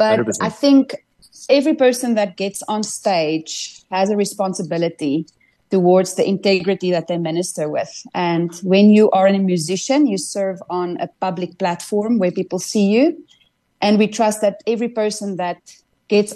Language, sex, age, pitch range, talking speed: English, female, 30-49, 180-210 Hz, 160 wpm